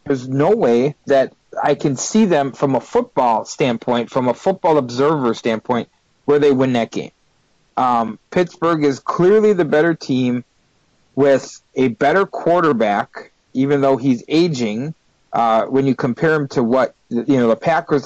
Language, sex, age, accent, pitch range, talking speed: English, male, 40-59, American, 120-150 Hz, 155 wpm